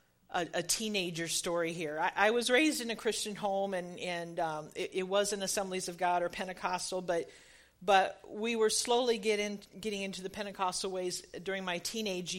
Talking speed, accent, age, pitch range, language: 180 wpm, American, 50-69, 175-215 Hz, English